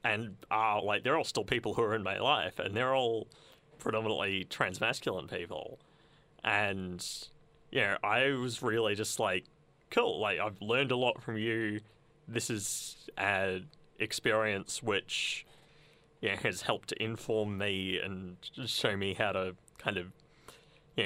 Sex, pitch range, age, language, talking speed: male, 105-130 Hz, 30-49, English, 155 wpm